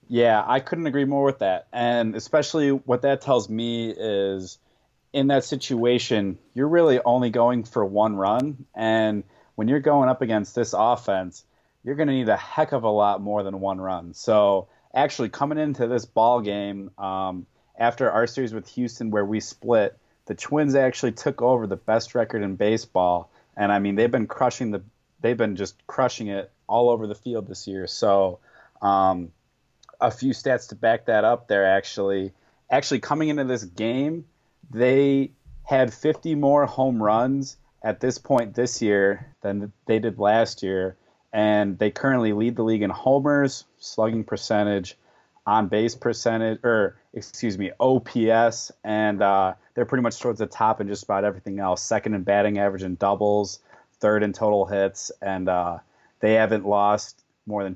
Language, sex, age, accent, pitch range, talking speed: English, male, 30-49, American, 100-130 Hz, 175 wpm